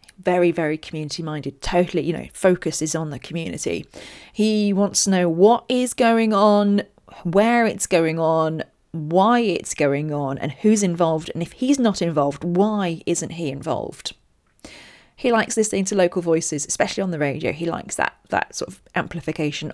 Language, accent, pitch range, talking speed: English, British, 155-195 Hz, 170 wpm